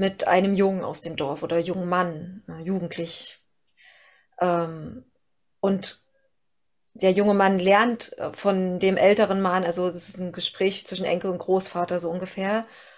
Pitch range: 185-210 Hz